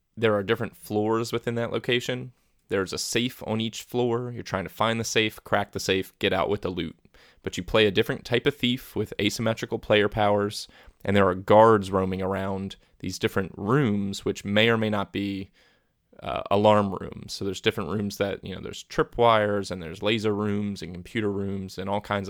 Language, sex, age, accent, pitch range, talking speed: English, male, 20-39, American, 100-115 Hz, 205 wpm